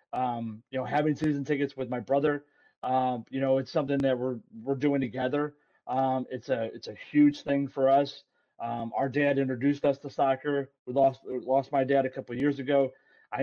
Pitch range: 130-145 Hz